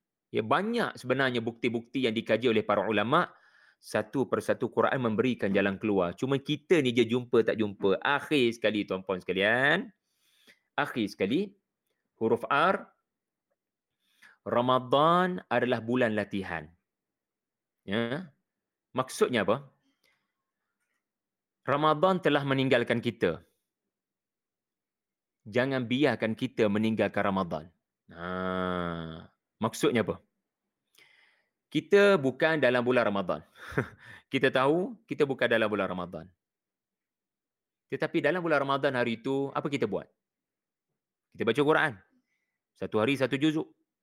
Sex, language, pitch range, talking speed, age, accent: male, English, 110-150 Hz, 105 wpm, 30-49, Indonesian